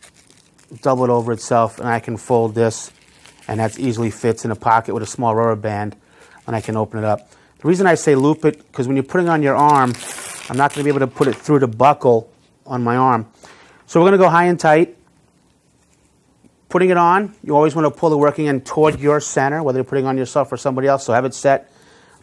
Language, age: English, 30-49